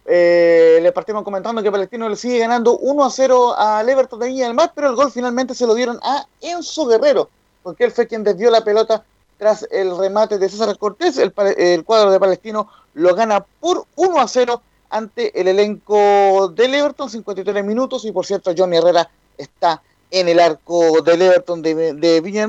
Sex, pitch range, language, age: male, 165-235 Hz, Spanish, 30-49